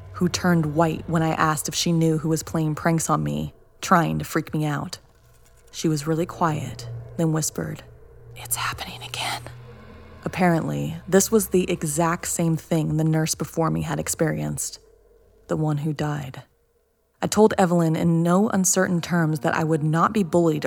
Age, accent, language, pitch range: 20-39, American, English, 150-175 Hz